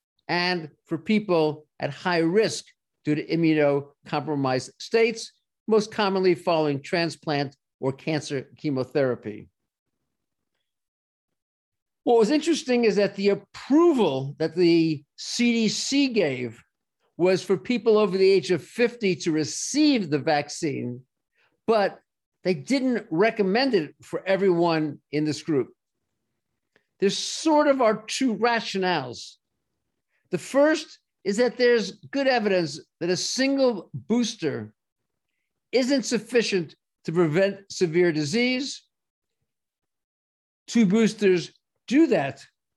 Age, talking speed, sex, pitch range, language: 50-69, 110 wpm, male, 150-225 Hz, English